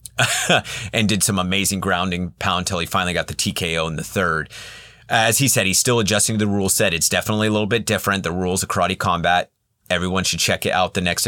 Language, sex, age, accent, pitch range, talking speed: English, male, 30-49, American, 90-110 Hz, 230 wpm